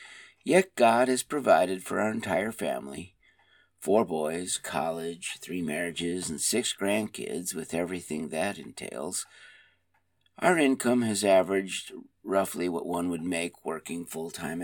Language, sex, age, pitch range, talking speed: English, male, 50-69, 85-115 Hz, 125 wpm